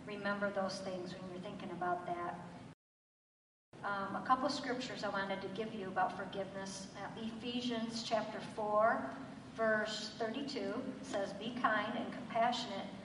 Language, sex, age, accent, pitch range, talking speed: English, male, 50-69, American, 200-240 Hz, 145 wpm